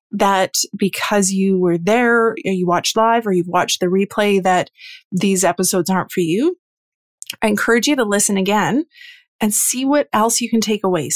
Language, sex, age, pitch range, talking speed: English, female, 30-49, 190-240 Hz, 185 wpm